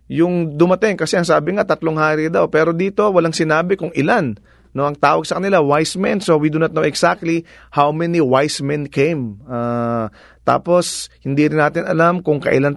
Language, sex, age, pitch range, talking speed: English, male, 30-49, 145-195 Hz, 195 wpm